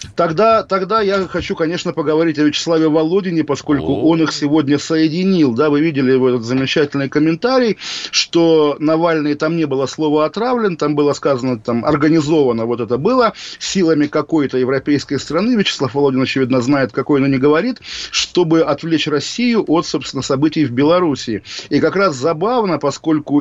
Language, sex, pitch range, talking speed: Russian, male, 135-165 Hz, 155 wpm